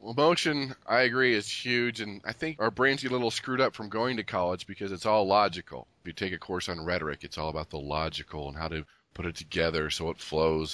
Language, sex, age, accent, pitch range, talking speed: English, male, 30-49, American, 90-125 Hz, 250 wpm